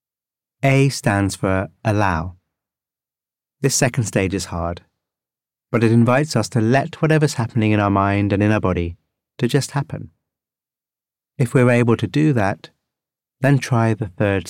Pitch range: 100-125 Hz